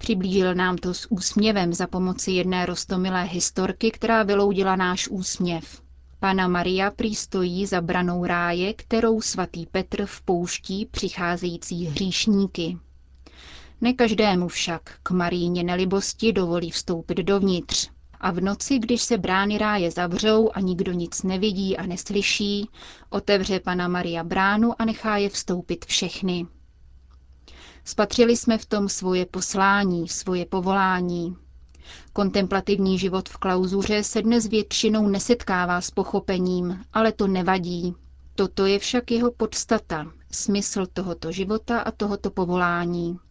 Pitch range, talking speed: 175-205 Hz, 125 wpm